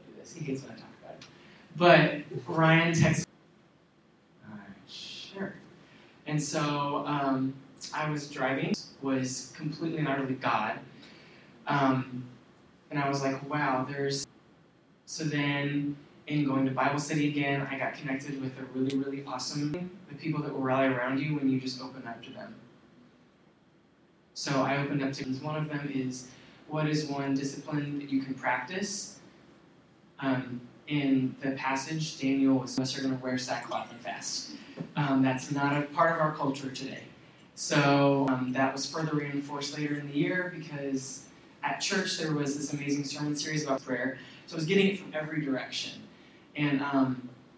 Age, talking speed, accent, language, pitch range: 20-39, 170 wpm, American, English, 130-150 Hz